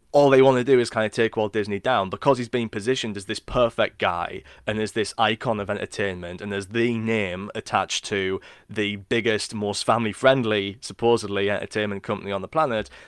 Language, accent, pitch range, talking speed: English, British, 100-115 Hz, 195 wpm